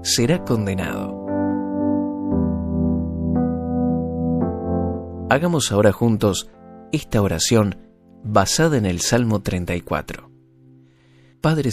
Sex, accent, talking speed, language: male, Argentinian, 65 wpm, Spanish